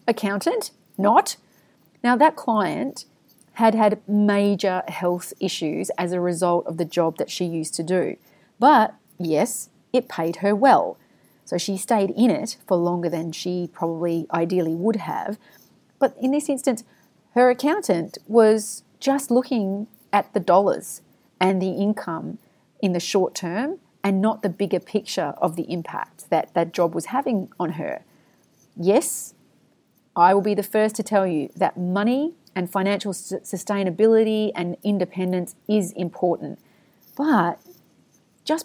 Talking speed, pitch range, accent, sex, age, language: 145 wpm, 180-225 Hz, Australian, female, 30-49, English